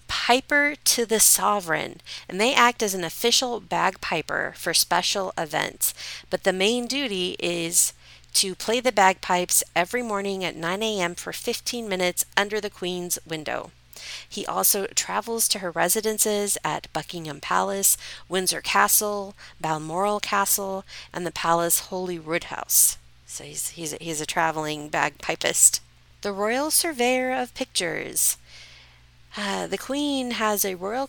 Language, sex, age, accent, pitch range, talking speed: English, female, 40-59, American, 155-210 Hz, 135 wpm